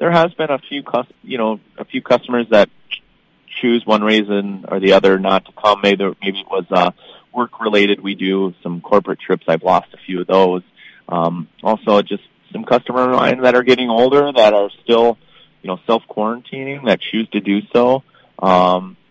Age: 30-49